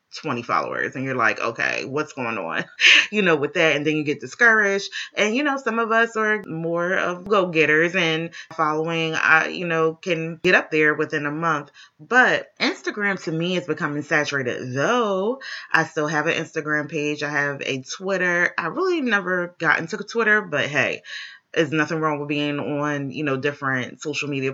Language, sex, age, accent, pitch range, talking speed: English, female, 20-39, American, 150-200 Hz, 190 wpm